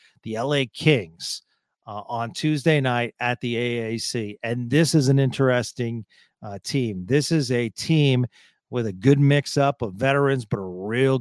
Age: 40-59